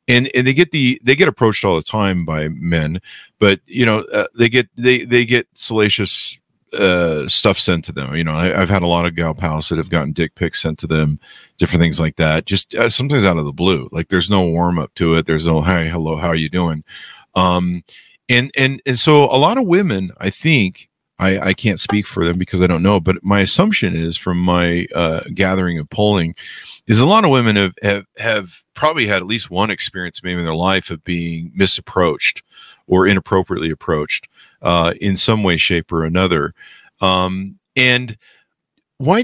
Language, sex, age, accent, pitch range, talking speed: English, male, 40-59, American, 85-110 Hz, 205 wpm